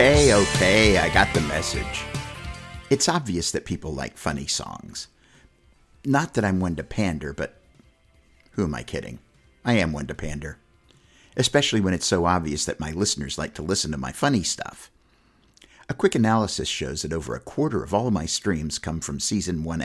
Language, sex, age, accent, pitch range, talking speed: English, male, 50-69, American, 75-110 Hz, 180 wpm